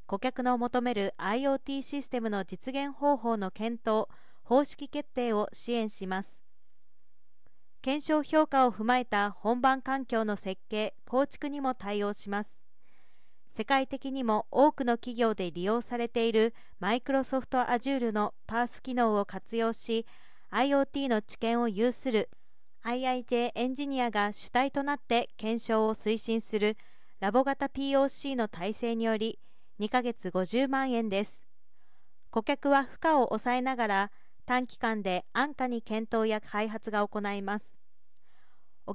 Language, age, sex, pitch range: Japanese, 40-59, female, 215-265 Hz